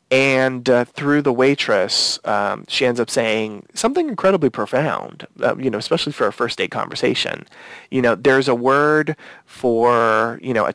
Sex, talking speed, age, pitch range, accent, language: male, 175 wpm, 30-49, 115-145 Hz, American, English